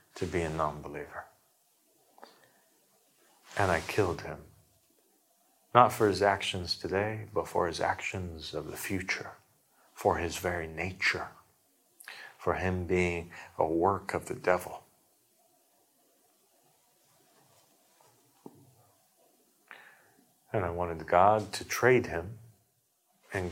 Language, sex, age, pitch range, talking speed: English, male, 50-69, 90-115 Hz, 100 wpm